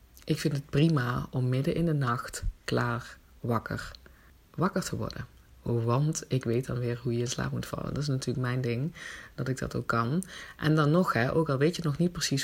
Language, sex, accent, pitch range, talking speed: Dutch, female, Dutch, 120-155 Hz, 220 wpm